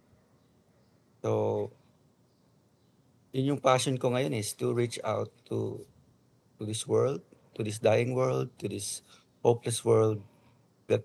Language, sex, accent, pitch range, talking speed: Filipino, male, native, 105-120 Hz, 125 wpm